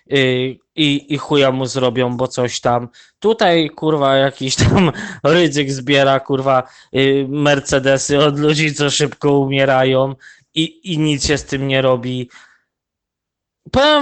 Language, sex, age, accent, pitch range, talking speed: Polish, male, 20-39, native, 135-170 Hz, 135 wpm